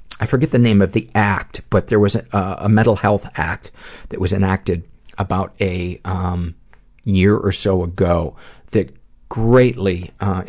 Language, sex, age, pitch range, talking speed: English, male, 40-59, 90-105 Hz, 160 wpm